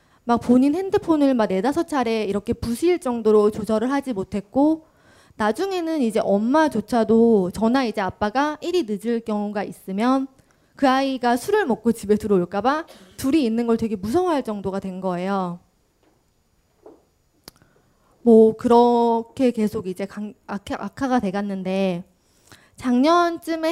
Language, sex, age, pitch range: Korean, female, 20-39, 200-275 Hz